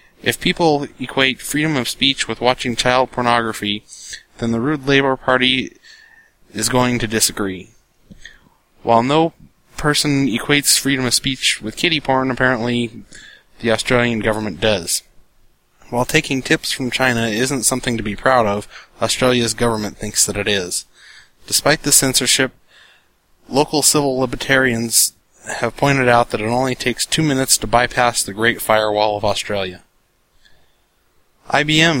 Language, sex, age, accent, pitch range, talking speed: English, male, 20-39, American, 110-130 Hz, 140 wpm